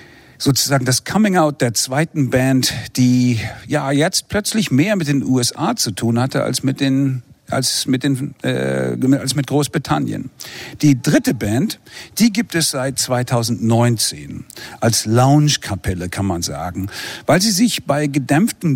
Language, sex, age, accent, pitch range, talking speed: German, male, 50-69, German, 115-150 Hz, 145 wpm